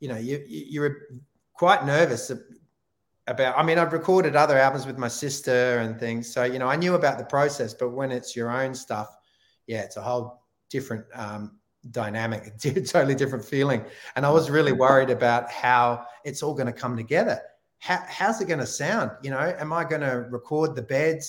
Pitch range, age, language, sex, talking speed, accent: 120-140 Hz, 30-49, English, male, 205 wpm, Australian